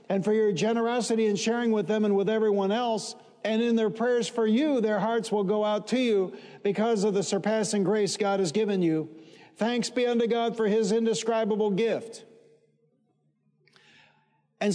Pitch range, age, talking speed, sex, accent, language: 185-215 Hz, 50-69, 175 wpm, male, American, English